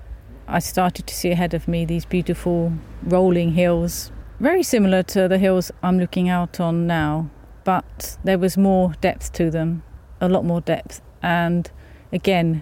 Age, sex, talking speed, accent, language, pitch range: 40-59, female, 160 wpm, British, English, 160-195 Hz